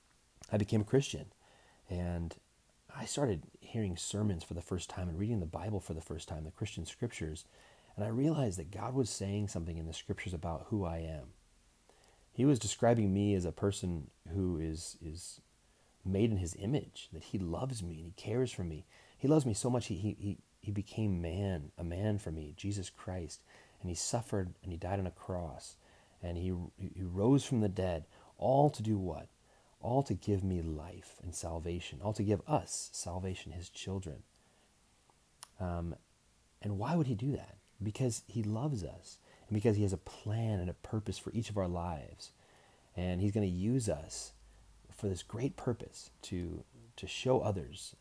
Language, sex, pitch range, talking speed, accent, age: English, male, 85-110 Hz, 190 wpm, American, 30-49